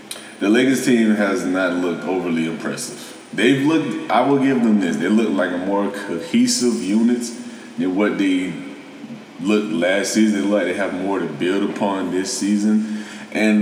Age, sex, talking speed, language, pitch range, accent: 20-39, male, 165 wpm, English, 85-110 Hz, American